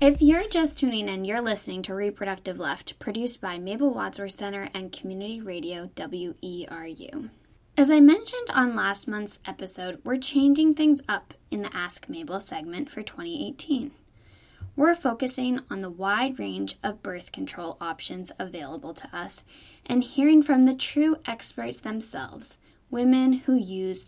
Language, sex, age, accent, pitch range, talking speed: English, female, 10-29, American, 190-270 Hz, 150 wpm